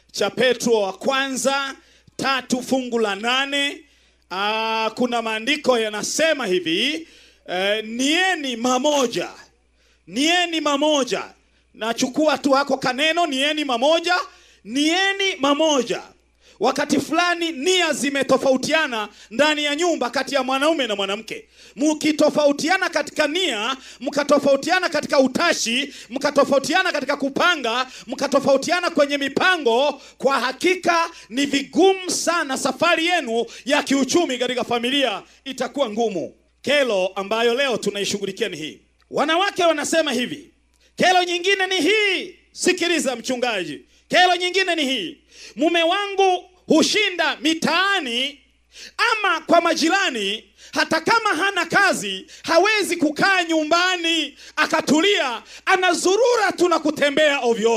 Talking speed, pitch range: 105 wpm, 255-340 Hz